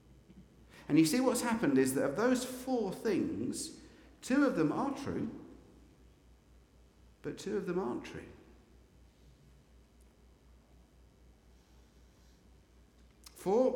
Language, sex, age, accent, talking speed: English, male, 50-69, British, 100 wpm